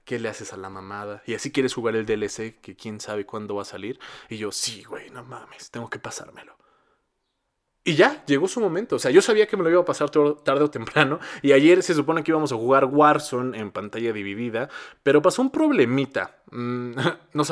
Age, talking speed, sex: 20-39, 220 wpm, male